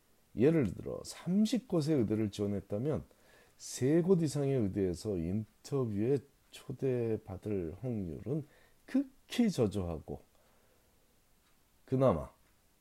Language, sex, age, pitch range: Korean, male, 40-59, 90-130 Hz